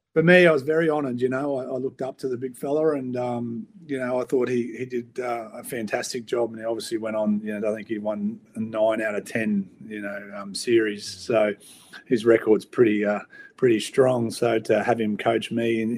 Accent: Australian